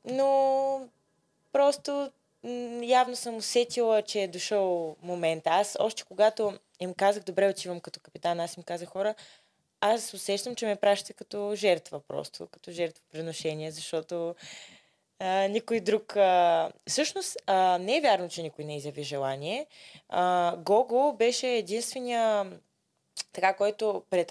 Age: 20-39